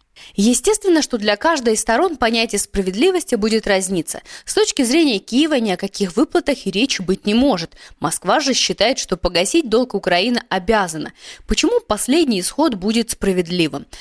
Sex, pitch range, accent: female, 185-280 Hz, native